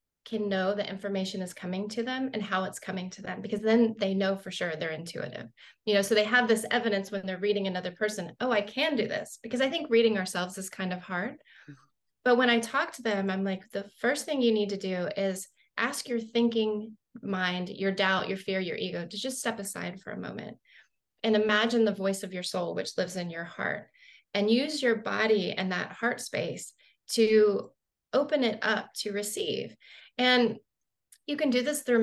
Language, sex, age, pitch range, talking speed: English, female, 30-49, 195-235 Hz, 210 wpm